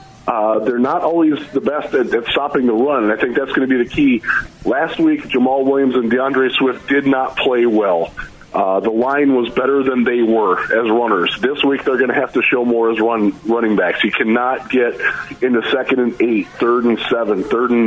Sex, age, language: male, 40-59, English